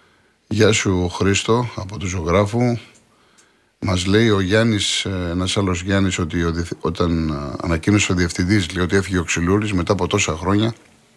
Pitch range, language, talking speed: 85-105 Hz, Greek, 145 wpm